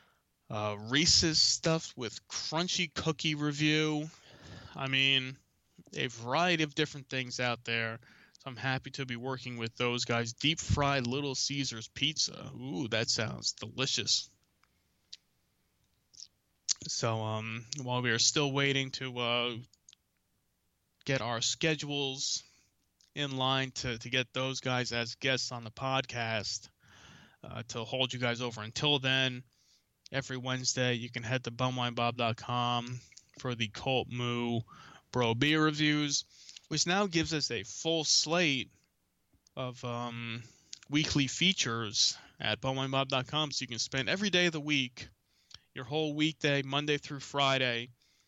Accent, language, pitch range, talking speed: American, English, 120-145 Hz, 135 wpm